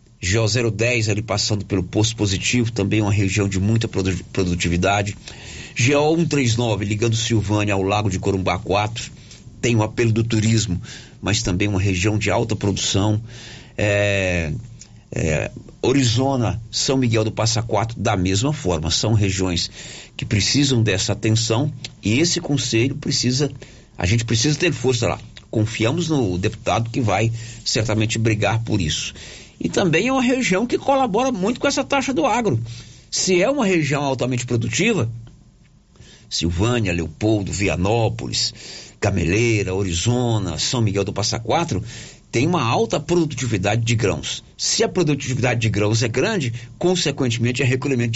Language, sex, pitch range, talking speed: Portuguese, male, 105-125 Hz, 145 wpm